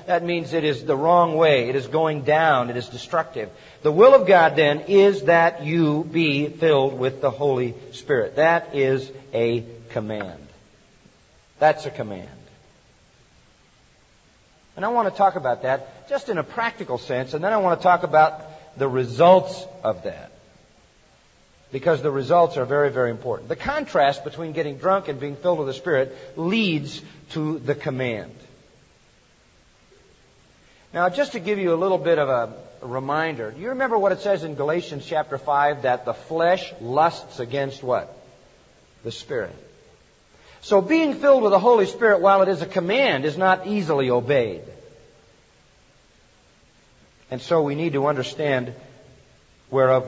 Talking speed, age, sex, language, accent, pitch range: 160 wpm, 50-69, male, English, American, 130-175 Hz